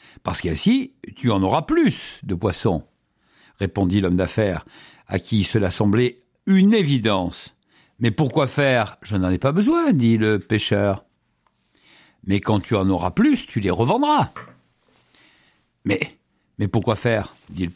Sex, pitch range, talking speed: male, 95-135 Hz, 145 wpm